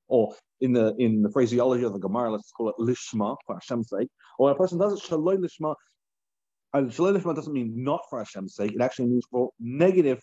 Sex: male